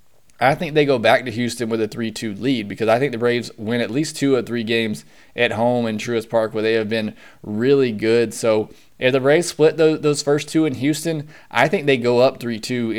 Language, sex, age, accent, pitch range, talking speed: English, male, 20-39, American, 110-135 Hz, 230 wpm